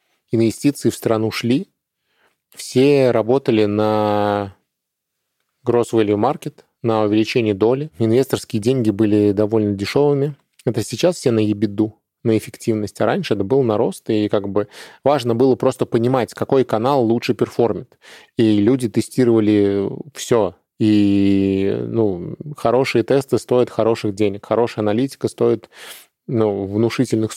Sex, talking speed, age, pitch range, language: male, 125 wpm, 20-39, 105-120 Hz, Russian